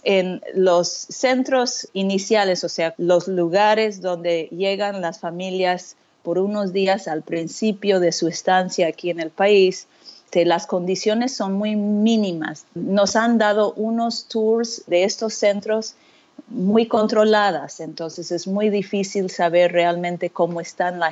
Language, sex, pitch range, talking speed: Spanish, female, 170-205 Hz, 140 wpm